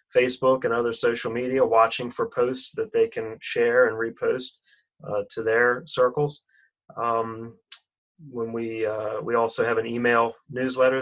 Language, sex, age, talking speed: English, male, 30-49, 150 wpm